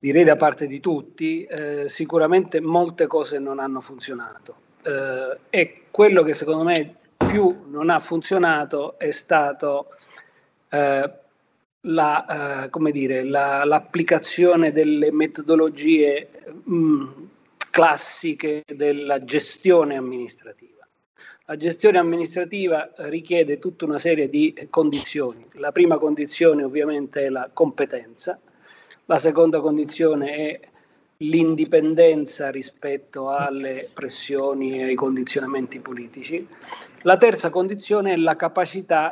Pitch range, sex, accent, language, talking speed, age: 140-175 Hz, male, native, Italian, 110 wpm, 40-59